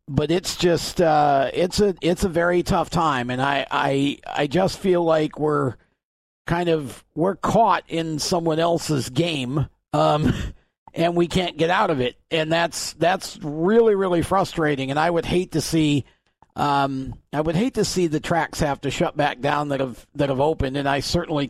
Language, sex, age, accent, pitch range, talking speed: English, male, 50-69, American, 145-170 Hz, 190 wpm